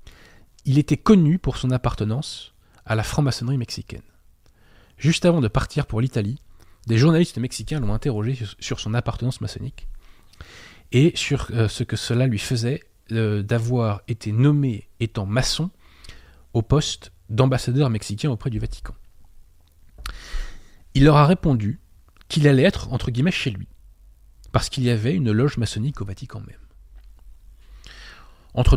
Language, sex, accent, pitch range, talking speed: French, male, French, 100-130 Hz, 140 wpm